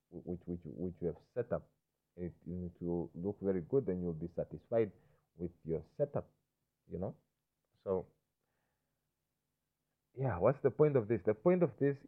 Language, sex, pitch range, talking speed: English, male, 90-130 Hz, 170 wpm